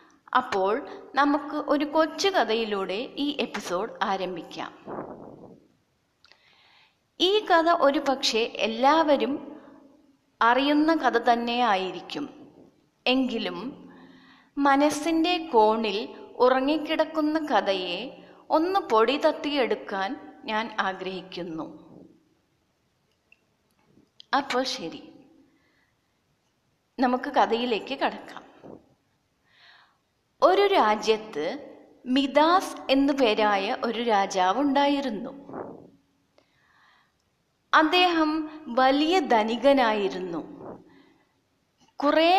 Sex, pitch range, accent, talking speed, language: female, 220-295 Hz, native, 60 wpm, Malayalam